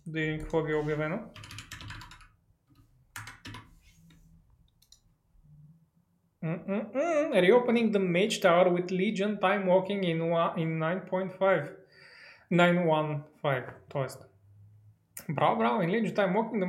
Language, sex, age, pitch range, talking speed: Bulgarian, male, 20-39, 155-190 Hz, 85 wpm